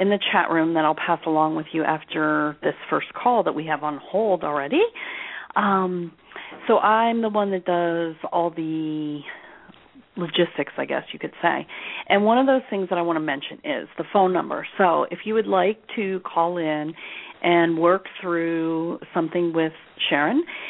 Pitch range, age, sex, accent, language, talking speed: 155-200 Hz, 40-59, female, American, English, 185 wpm